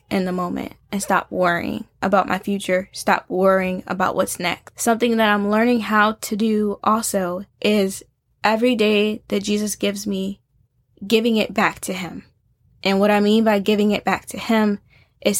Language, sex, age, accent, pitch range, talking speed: English, female, 10-29, American, 180-215 Hz, 175 wpm